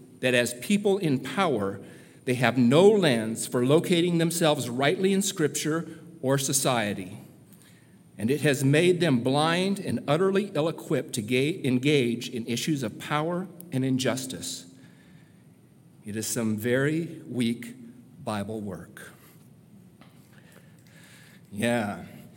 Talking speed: 115 wpm